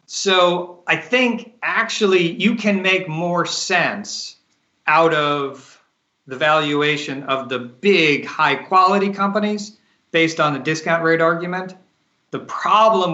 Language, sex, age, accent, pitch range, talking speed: English, male, 40-59, American, 135-185 Hz, 125 wpm